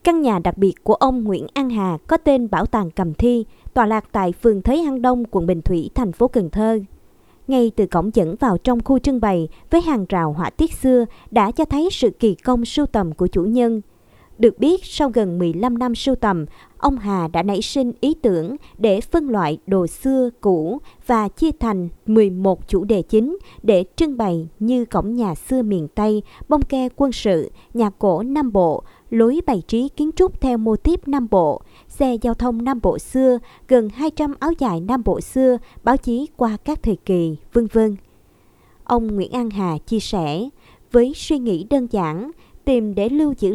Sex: male